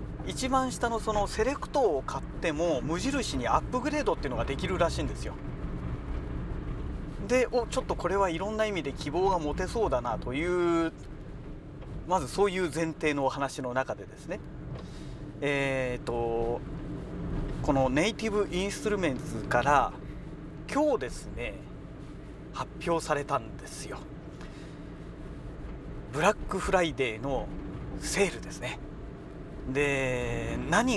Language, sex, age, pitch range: Japanese, male, 40-59, 130-195 Hz